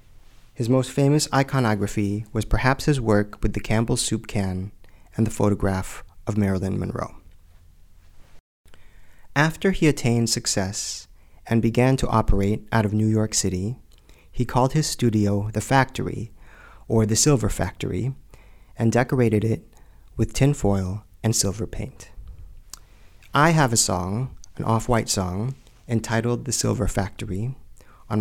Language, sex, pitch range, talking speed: English, male, 95-120 Hz, 135 wpm